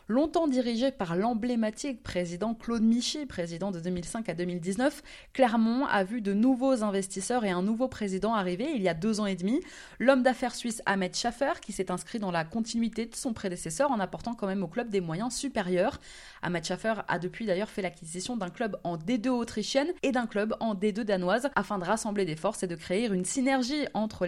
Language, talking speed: French, 205 wpm